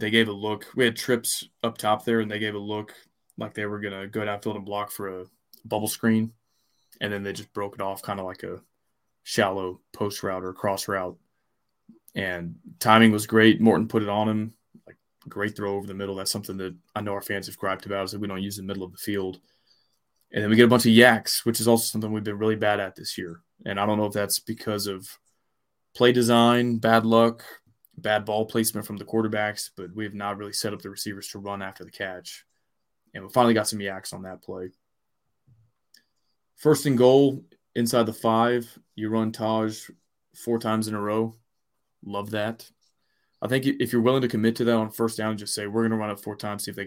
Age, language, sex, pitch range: 20-39, English, male, 100-115 Hz